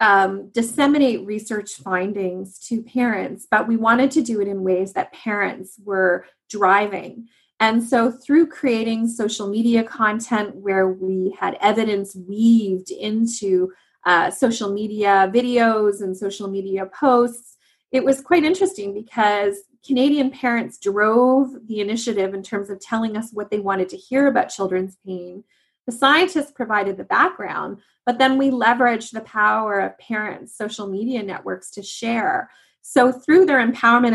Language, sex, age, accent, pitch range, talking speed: English, female, 30-49, American, 195-245 Hz, 150 wpm